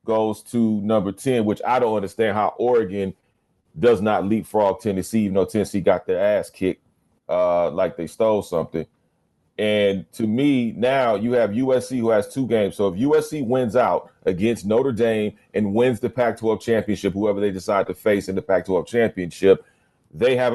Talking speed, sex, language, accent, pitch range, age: 180 wpm, male, English, American, 105-130 Hz, 40-59